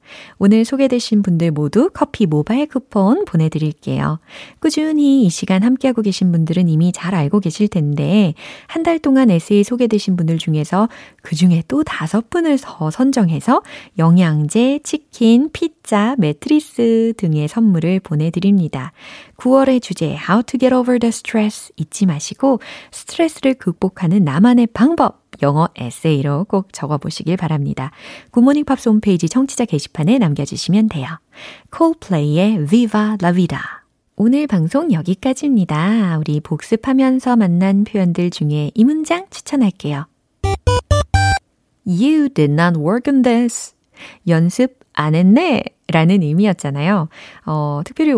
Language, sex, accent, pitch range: Korean, female, native, 160-240 Hz